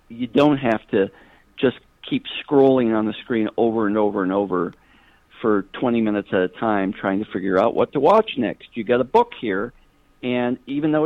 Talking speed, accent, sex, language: 200 wpm, American, male, English